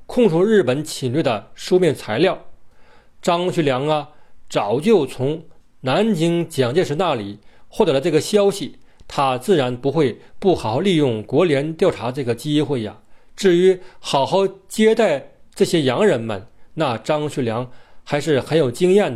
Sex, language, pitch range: male, Chinese, 125-185 Hz